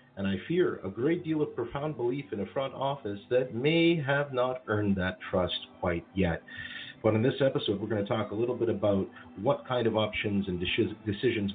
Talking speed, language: 210 wpm, English